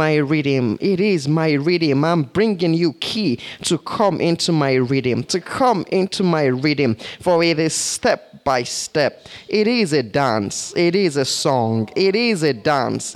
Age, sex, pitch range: 20-39, male, 150-210 Hz